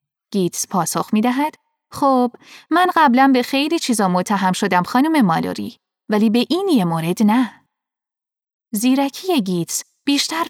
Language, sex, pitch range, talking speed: Persian, female, 195-280 Hz, 125 wpm